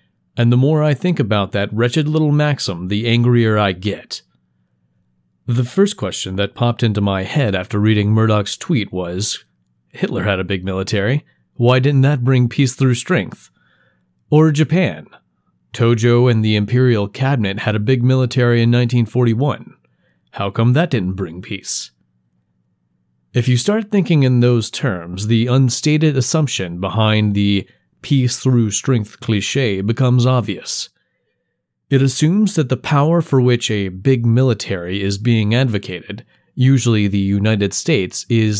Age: 30-49